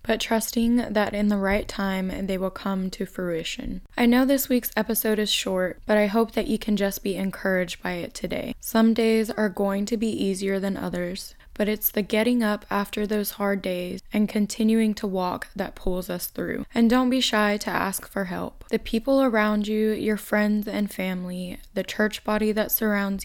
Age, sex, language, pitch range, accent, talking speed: 10-29, female, English, 190-220 Hz, American, 200 wpm